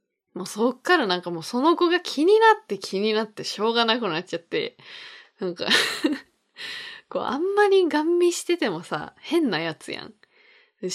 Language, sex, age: Japanese, female, 20-39